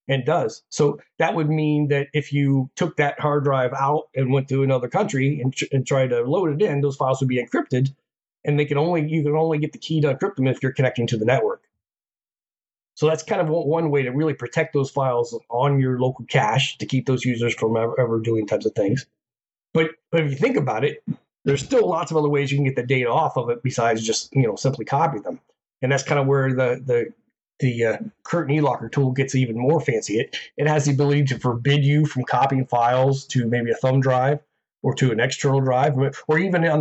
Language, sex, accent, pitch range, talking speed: English, male, American, 125-150 Hz, 235 wpm